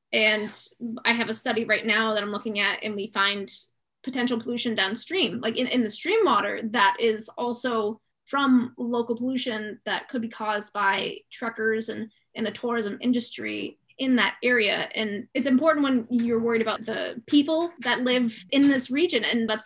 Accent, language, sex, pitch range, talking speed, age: American, English, female, 225-260 Hz, 180 wpm, 20-39